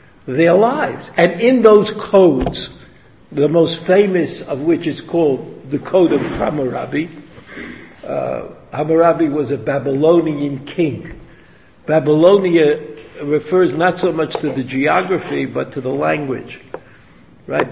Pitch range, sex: 155-200 Hz, male